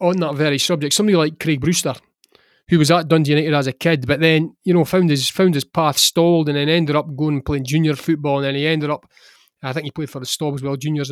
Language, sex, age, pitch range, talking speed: English, male, 30-49, 145-175 Hz, 260 wpm